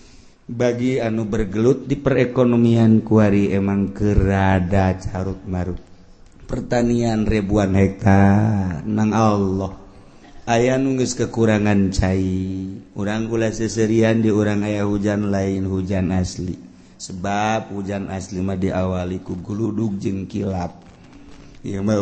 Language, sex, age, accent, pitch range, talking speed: Indonesian, male, 50-69, native, 95-115 Hz, 105 wpm